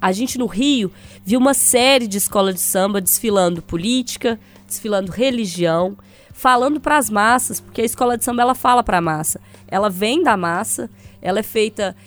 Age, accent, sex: 20-39, Brazilian, female